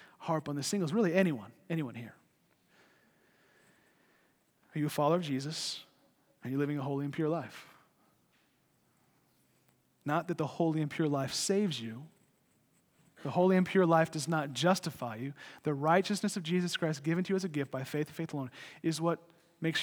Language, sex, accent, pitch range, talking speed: English, male, American, 140-170 Hz, 175 wpm